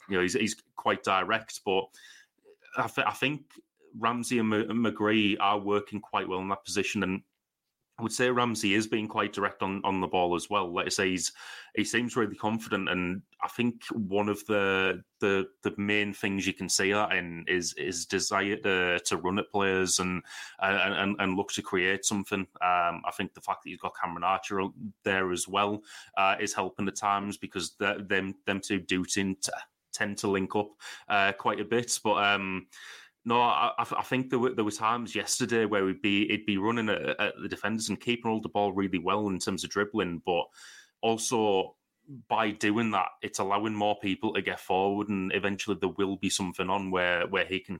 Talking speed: 205 wpm